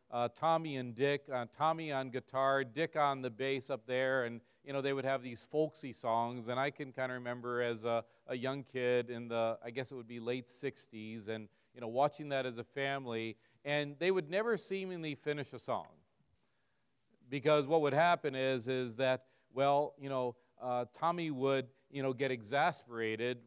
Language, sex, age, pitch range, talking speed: English, male, 40-59, 120-145 Hz, 195 wpm